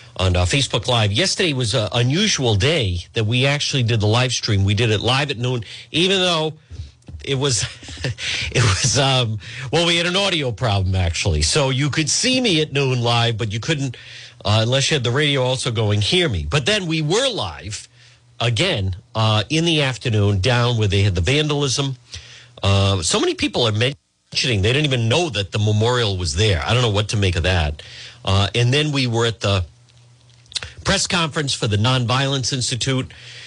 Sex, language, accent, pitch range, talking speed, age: male, English, American, 115-145 Hz, 195 wpm, 50-69